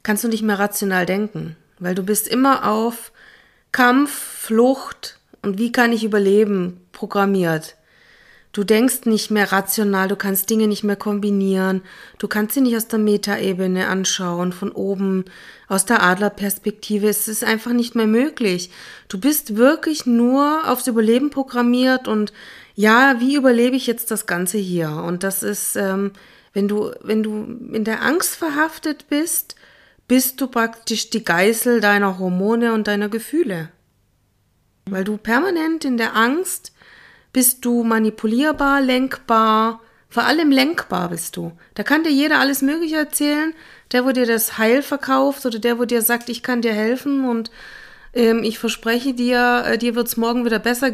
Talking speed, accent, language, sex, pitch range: 160 wpm, German, German, female, 205-255 Hz